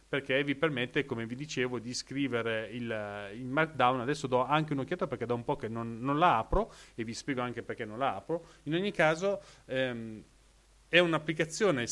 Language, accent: Italian, native